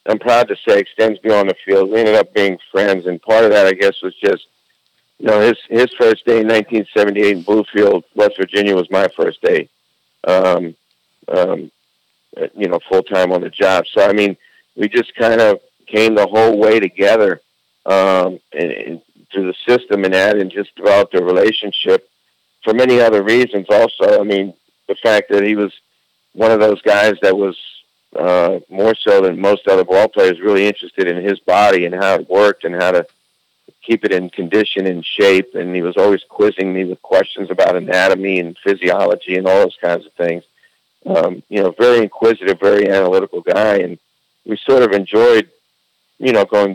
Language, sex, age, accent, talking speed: English, male, 60-79, American, 185 wpm